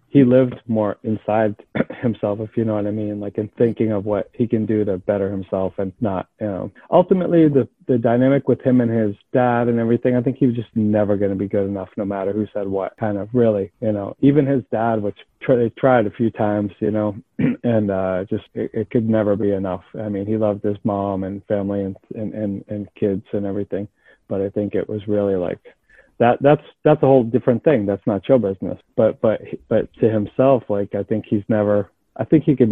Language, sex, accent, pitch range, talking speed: English, male, American, 100-120 Hz, 230 wpm